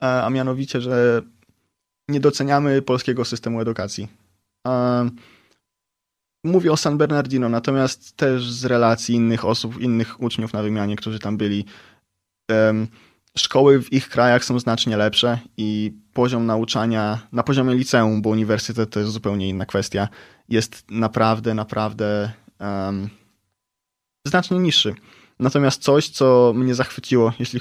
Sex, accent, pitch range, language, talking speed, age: male, native, 105-125 Hz, Polish, 120 wpm, 20-39